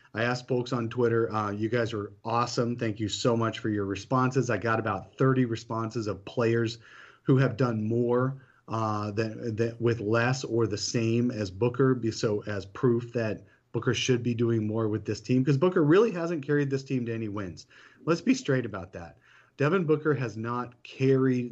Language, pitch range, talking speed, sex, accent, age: English, 110-130 Hz, 200 wpm, male, American, 30-49